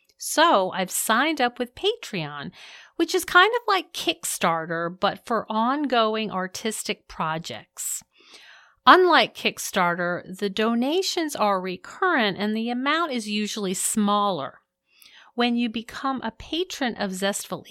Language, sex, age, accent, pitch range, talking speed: English, female, 40-59, American, 185-275 Hz, 120 wpm